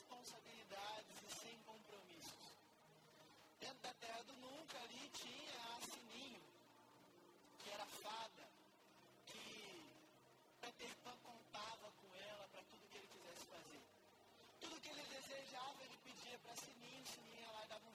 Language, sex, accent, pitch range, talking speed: Gujarati, male, Brazilian, 220-265 Hz, 145 wpm